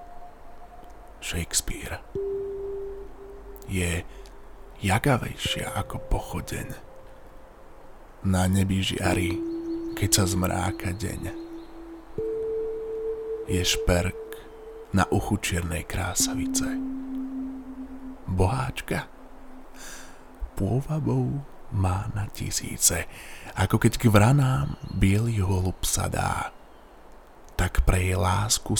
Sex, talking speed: male, 70 wpm